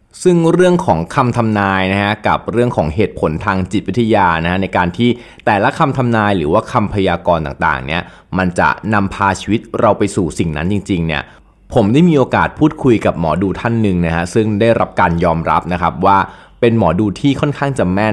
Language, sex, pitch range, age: Thai, male, 90-120 Hz, 20-39